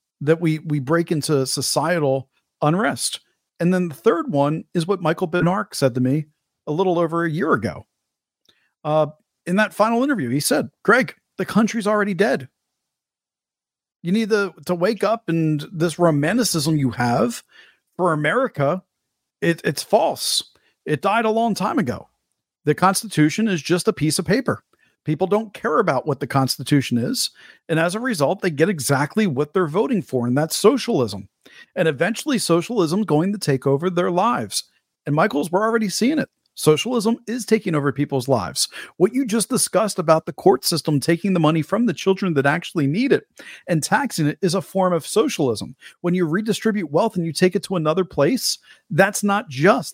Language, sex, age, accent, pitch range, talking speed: English, male, 40-59, American, 150-205 Hz, 185 wpm